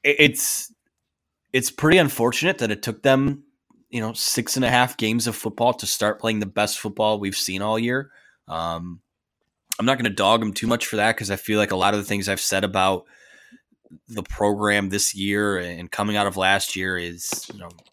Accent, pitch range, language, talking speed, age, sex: American, 100-125 Hz, English, 210 wpm, 20-39, male